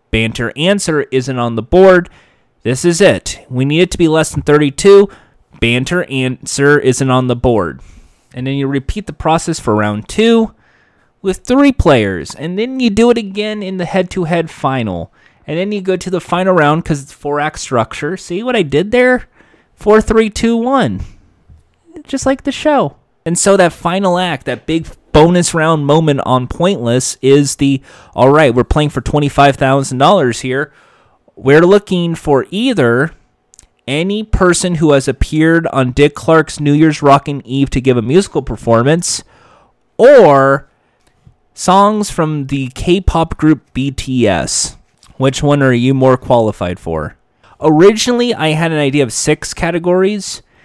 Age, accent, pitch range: 30-49, American, 130-180 Hz